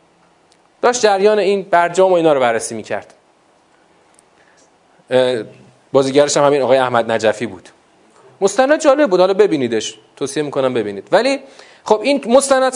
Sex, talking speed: male, 135 wpm